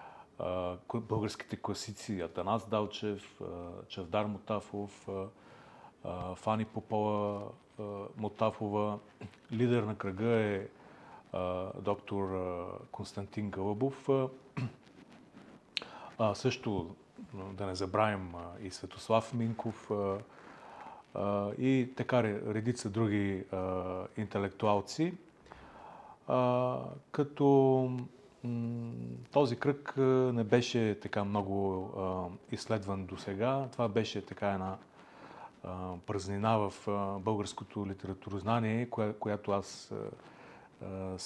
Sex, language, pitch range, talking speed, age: male, Bulgarian, 100-120 Hz, 80 wpm, 40-59